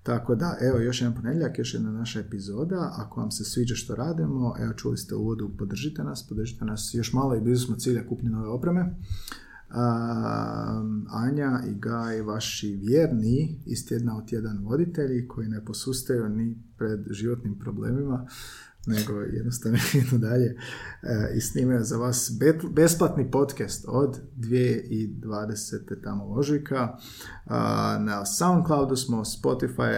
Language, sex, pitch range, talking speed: Croatian, male, 110-130 Hz, 140 wpm